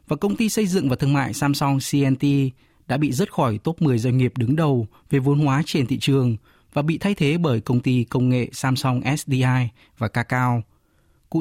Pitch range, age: 125-155 Hz, 20-39